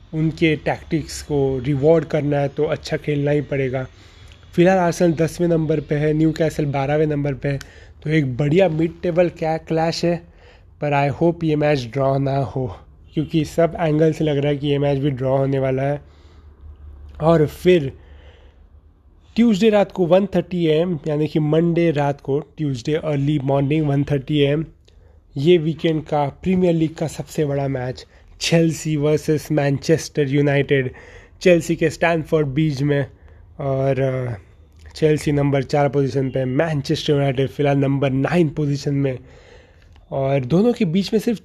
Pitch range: 140-165 Hz